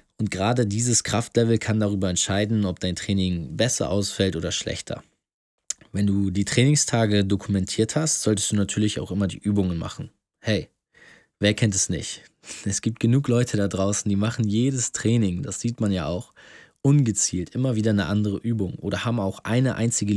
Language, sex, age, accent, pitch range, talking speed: German, male, 20-39, German, 100-120 Hz, 175 wpm